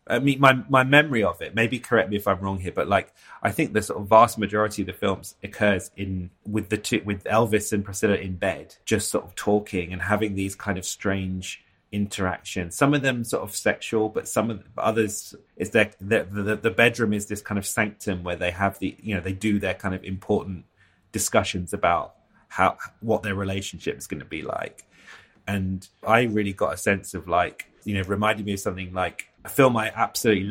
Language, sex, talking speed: English, male, 220 wpm